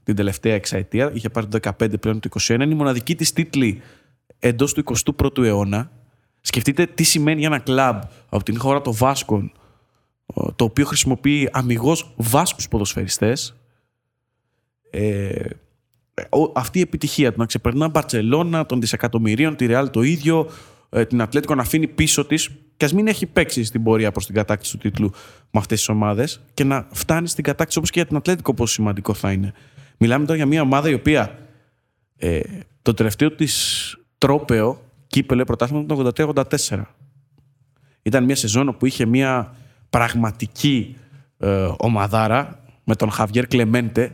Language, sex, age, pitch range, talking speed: Greek, male, 20-39, 115-145 Hz, 155 wpm